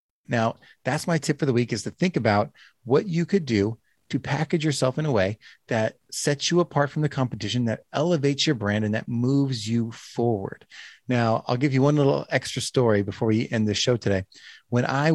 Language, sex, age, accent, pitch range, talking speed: English, male, 30-49, American, 115-150 Hz, 210 wpm